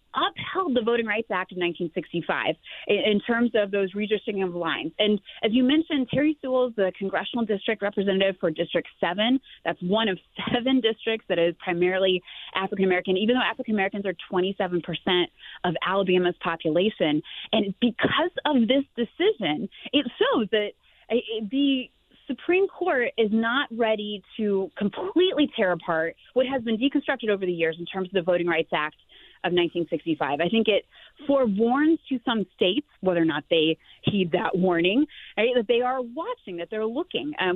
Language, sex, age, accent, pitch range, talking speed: English, female, 30-49, American, 185-245 Hz, 165 wpm